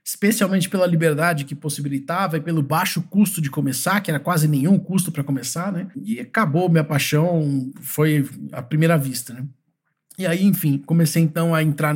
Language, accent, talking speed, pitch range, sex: Portuguese, Brazilian, 175 wpm, 140-165 Hz, male